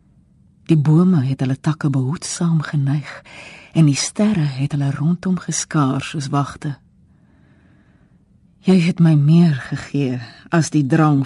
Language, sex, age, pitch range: Dutch, female, 50-69, 140-170 Hz